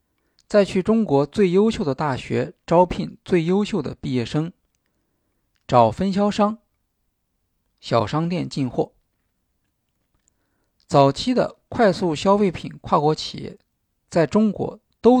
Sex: male